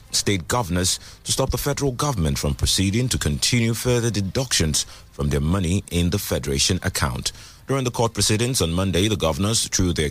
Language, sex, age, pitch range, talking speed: English, male, 30-49, 85-115 Hz, 180 wpm